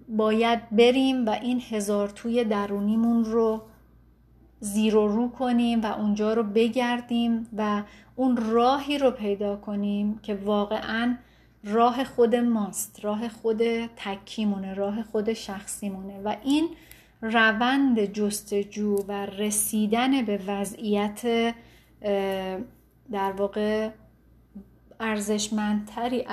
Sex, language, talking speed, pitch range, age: female, Persian, 100 wpm, 205-235 Hz, 30-49